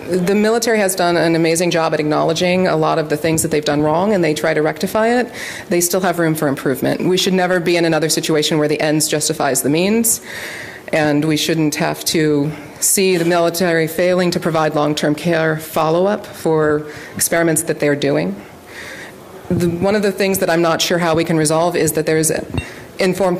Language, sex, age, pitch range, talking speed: English, female, 30-49, 155-180 Hz, 205 wpm